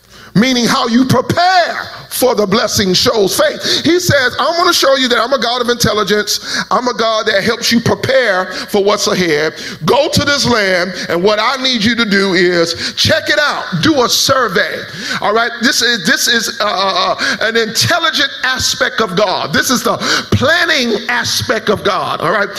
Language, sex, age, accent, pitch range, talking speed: English, male, 40-59, American, 210-265 Hz, 190 wpm